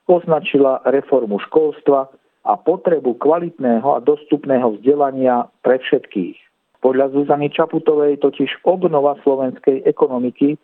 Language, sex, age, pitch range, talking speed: Slovak, male, 50-69, 120-150 Hz, 100 wpm